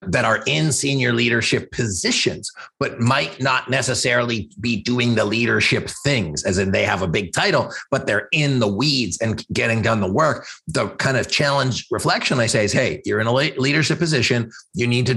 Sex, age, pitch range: male, 30-49, 110-130 Hz